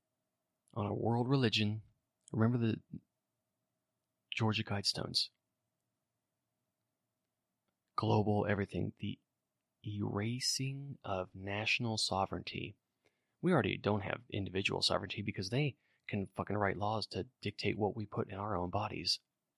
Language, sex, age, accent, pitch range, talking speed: English, male, 30-49, American, 95-115 Hz, 110 wpm